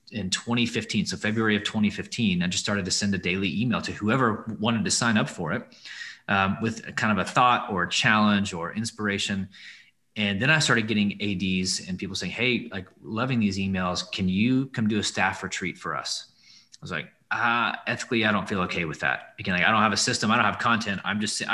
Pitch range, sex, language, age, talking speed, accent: 95-115 Hz, male, English, 30-49, 225 wpm, American